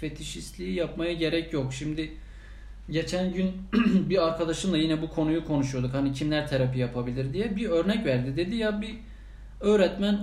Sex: male